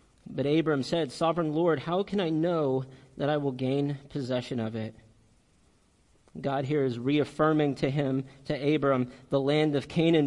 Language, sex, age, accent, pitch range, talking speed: English, male, 40-59, American, 135-165 Hz, 165 wpm